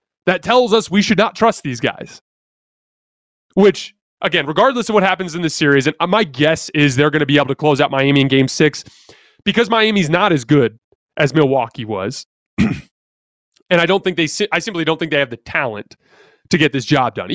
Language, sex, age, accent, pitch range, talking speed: English, male, 30-49, American, 145-195 Hz, 210 wpm